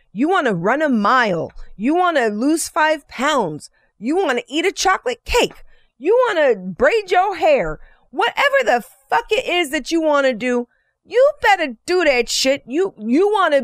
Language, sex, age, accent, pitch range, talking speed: English, female, 30-49, American, 200-300 Hz, 195 wpm